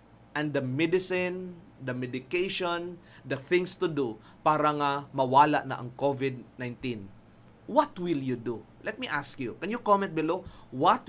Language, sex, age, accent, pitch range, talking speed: English, male, 20-39, Filipino, 135-175 Hz, 150 wpm